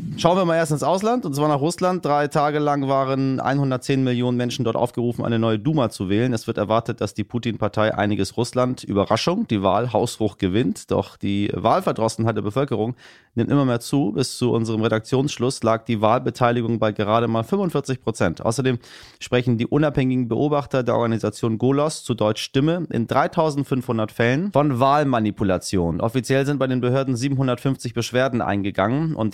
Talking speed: 170 wpm